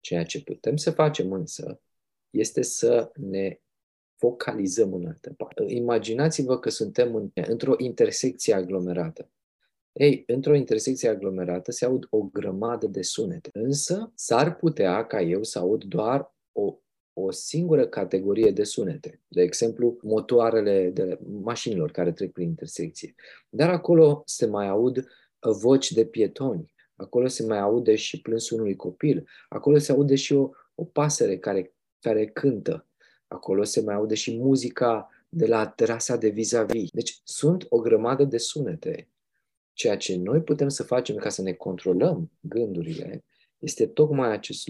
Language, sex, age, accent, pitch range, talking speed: Romanian, male, 20-39, native, 100-150 Hz, 145 wpm